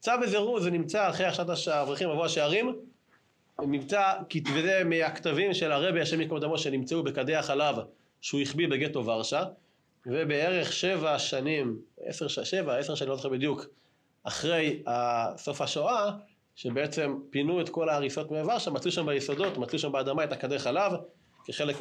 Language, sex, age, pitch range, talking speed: Hebrew, male, 30-49, 135-185 Hz, 145 wpm